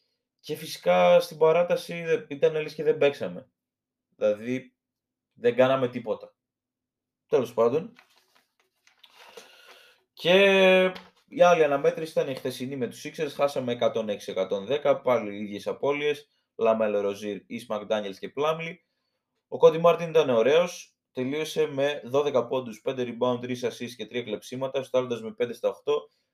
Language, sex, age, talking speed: Greek, male, 20-39, 130 wpm